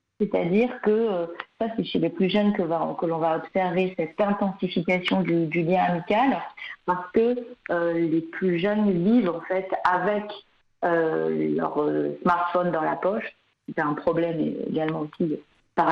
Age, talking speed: 40-59, 155 wpm